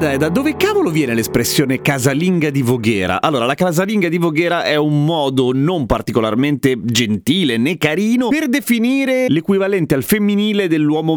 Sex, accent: male, native